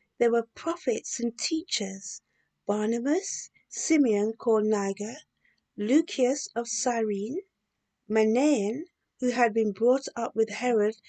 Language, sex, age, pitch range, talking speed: English, female, 50-69, 220-310 Hz, 110 wpm